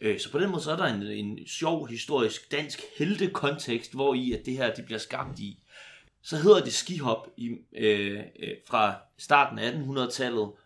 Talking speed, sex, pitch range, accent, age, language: 180 wpm, male, 105-135 Hz, native, 30-49, Danish